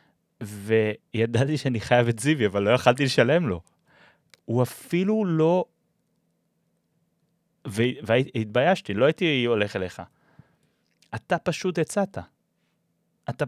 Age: 30-49